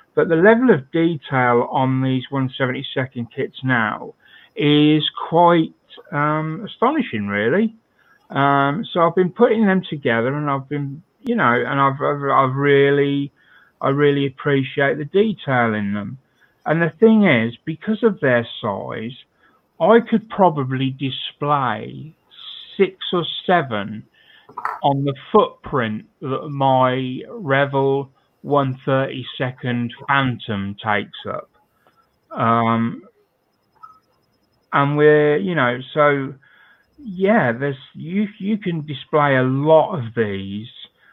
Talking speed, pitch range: 120 wpm, 125-165 Hz